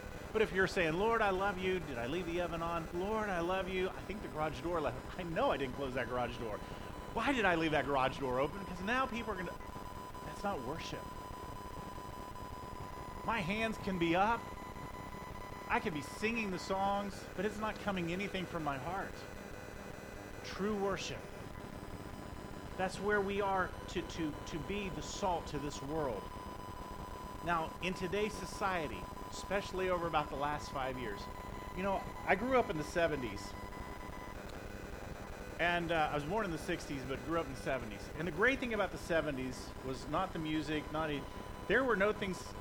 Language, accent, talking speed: English, American, 185 wpm